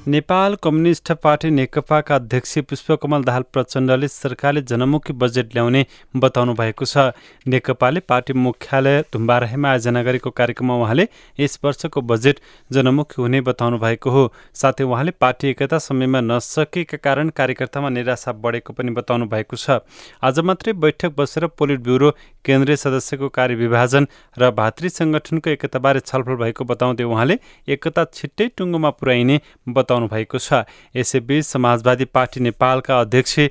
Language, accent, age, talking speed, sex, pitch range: English, Indian, 30-49, 140 wpm, male, 125-150 Hz